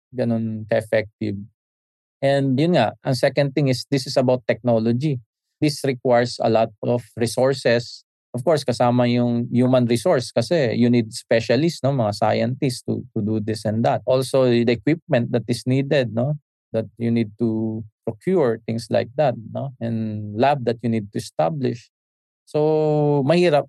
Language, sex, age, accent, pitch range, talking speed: English, male, 20-39, Filipino, 115-135 Hz, 160 wpm